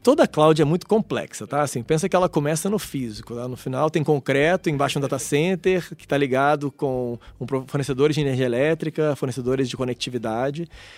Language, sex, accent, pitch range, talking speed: Portuguese, male, Brazilian, 130-160 Hz, 190 wpm